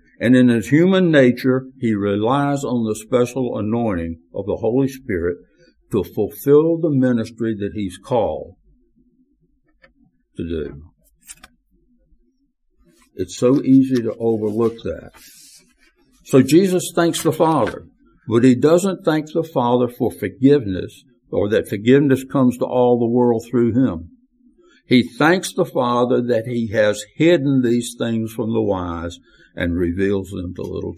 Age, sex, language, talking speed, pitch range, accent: 60-79, male, English, 140 wpm, 100-145 Hz, American